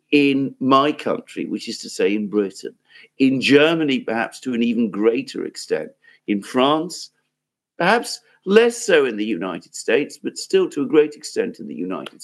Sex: male